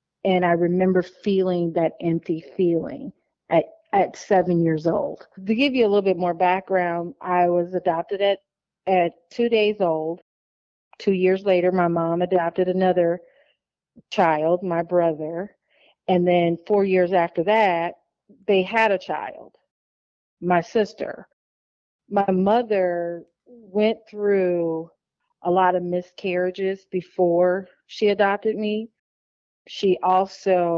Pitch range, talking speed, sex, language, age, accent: 170-200 Hz, 125 wpm, female, English, 40-59, American